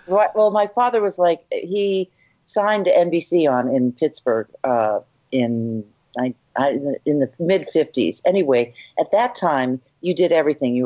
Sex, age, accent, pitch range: female, 50-69, American, 130-165 Hz